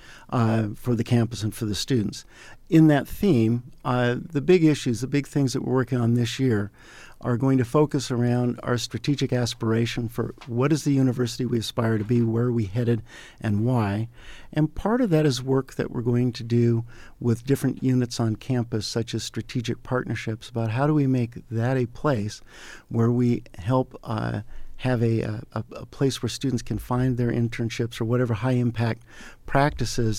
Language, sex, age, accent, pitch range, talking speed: English, male, 50-69, American, 115-130 Hz, 190 wpm